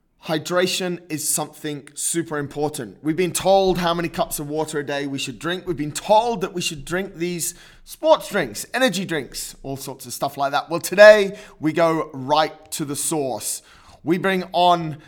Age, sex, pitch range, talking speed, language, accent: 20-39, male, 135-175 Hz, 185 wpm, English, British